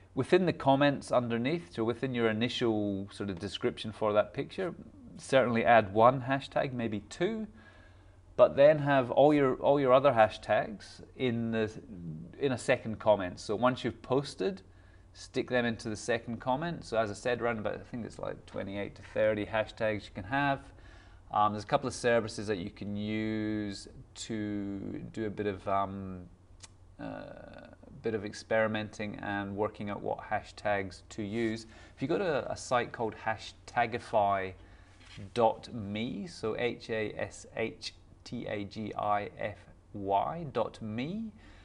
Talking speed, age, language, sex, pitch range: 140 wpm, 30-49, English, male, 95-120 Hz